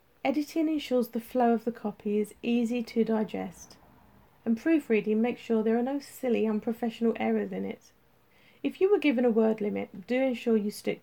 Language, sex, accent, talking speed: English, female, British, 185 wpm